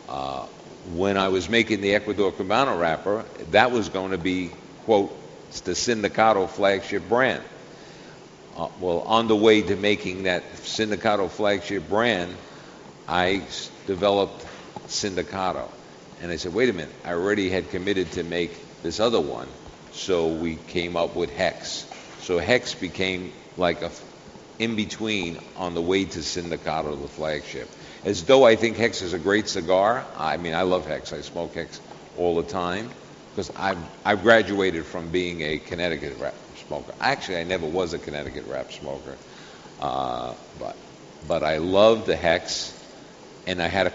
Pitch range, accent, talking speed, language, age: 85-100 Hz, American, 160 wpm, English, 50-69